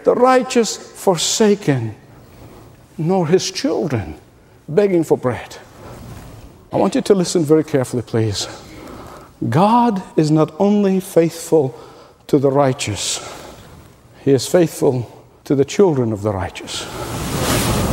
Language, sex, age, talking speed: English, male, 60-79, 115 wpm